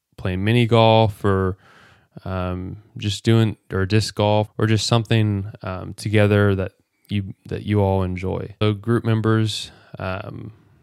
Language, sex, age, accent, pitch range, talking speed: English, male, 20-39, American, 100-110 Hz, 140 wpm